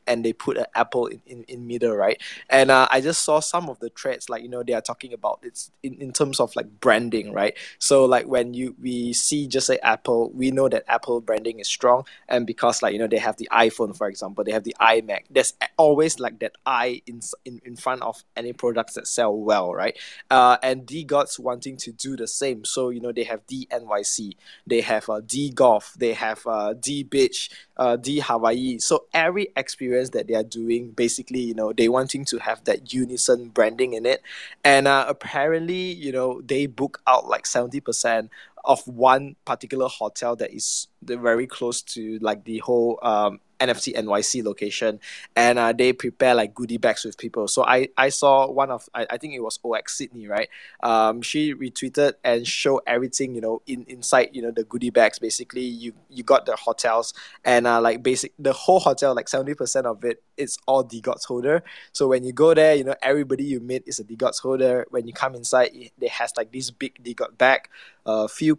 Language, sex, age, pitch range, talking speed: English, male, 20-39, 120-135 Hz, 210 wpm